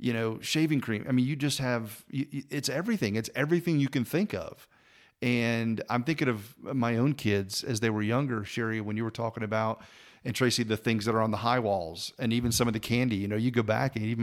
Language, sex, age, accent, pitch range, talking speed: English, male, 40-59, American, 110-135 Hz, 240 wpm